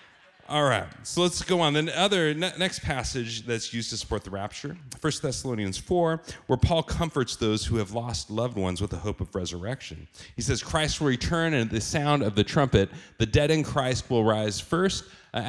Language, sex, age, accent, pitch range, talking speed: English, male, 40-59, American, 105-145 Hz, 205 wpm